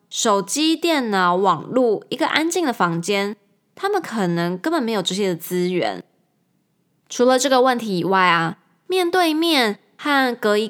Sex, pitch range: female, 195-295 Hz